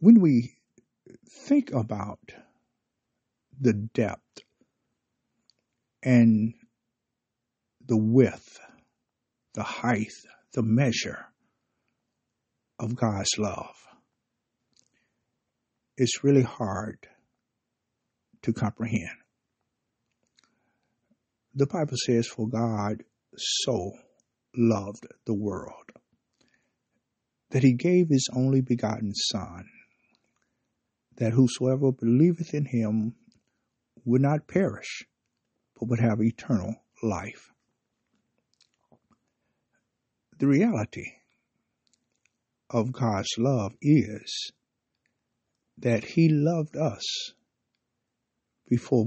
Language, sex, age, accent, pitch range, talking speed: English, male, 60-79, American, 115-130 Hz, 75 wpm